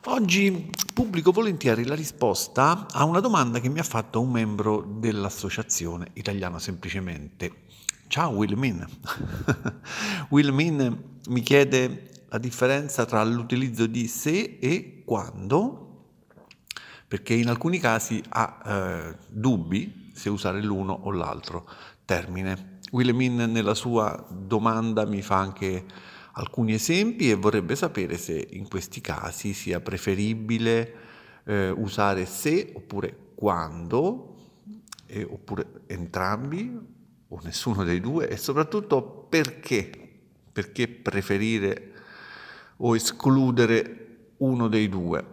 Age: 50-69